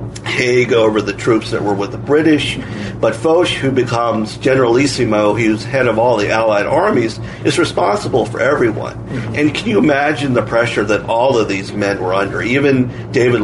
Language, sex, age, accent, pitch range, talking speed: English, male, 50-69, American, 110-130 Hz, 180 wpm